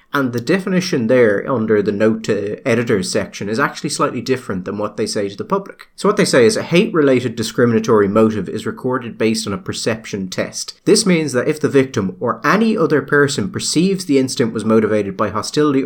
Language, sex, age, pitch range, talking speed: English, male, 30-49, 110-155 Hz, 205 wpm